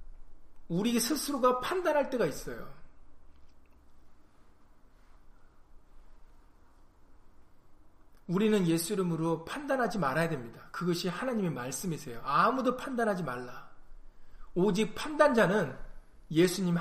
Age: 40-59